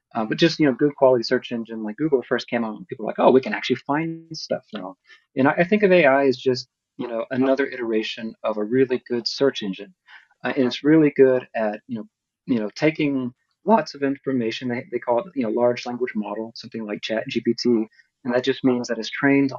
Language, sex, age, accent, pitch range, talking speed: English, male, 30-49, American, 115-135 Hz, 235 wpm